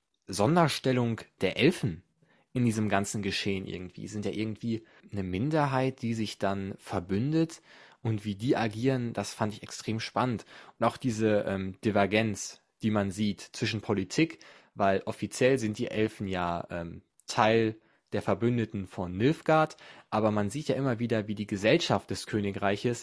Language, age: German, 20-39